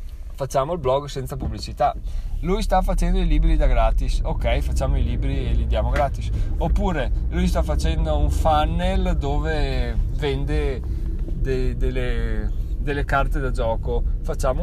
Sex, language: male, Italian